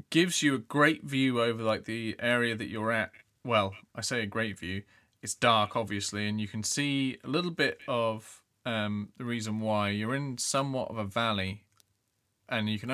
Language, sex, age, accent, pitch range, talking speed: English, male, 20-39, British, 100-120 Hz, 195 wpm